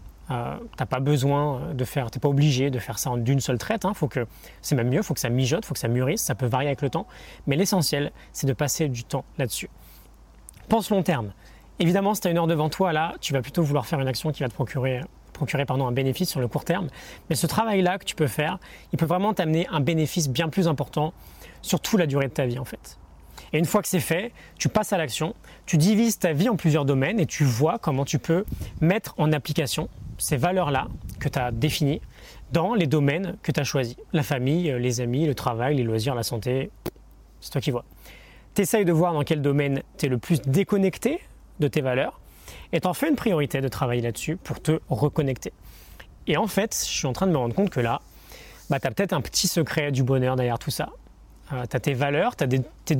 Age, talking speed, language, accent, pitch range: 20-39, 245 wpm, French, French, 130-170 Hz